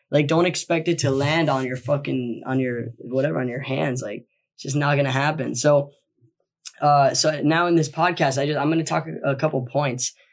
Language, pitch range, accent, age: English, 140-175 Hz, American, 10-29